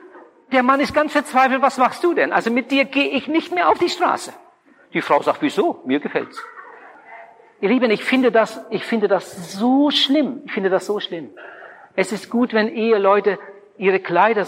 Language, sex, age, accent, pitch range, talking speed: German, male, 50-69, German, 205-265 Hz, 195 wpm